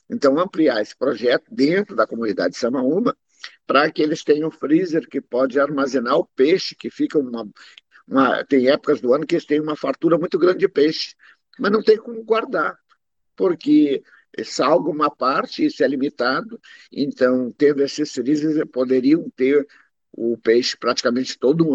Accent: Brazilian